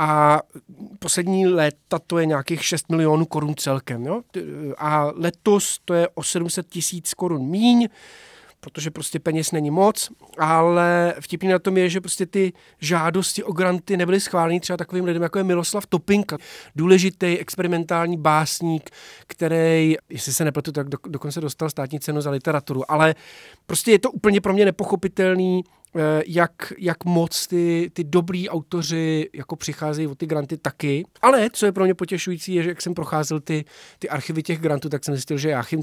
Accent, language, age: native, Czech, 40-59